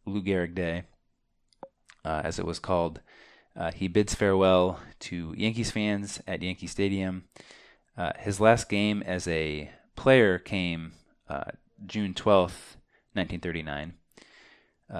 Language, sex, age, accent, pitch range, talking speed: English, male, 20-39, American, 80-105 Hz, 120 wpm